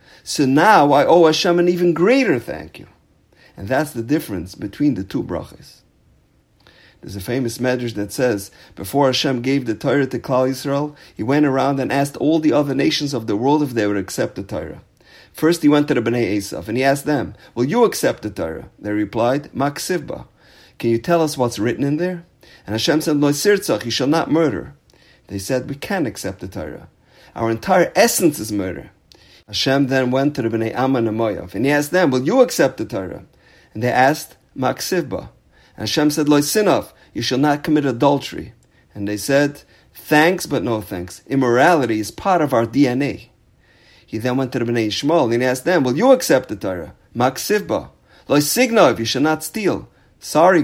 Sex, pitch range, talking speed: male, 115-155 Hz, 195 wpm